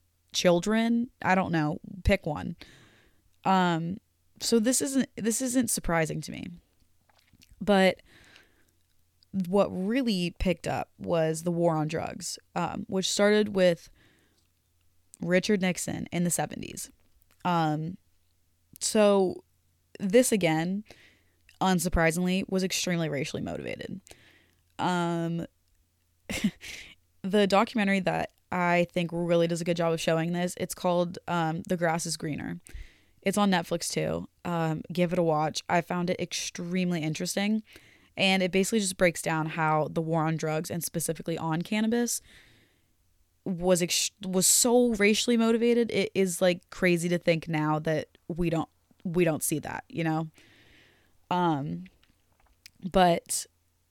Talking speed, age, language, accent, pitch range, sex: 130 wpm, 20-39, English, American, 115-190 Hz, female